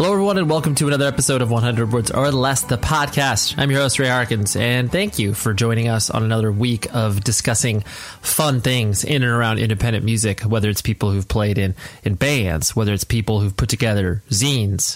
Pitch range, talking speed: 105-130 Hz, 210 wpm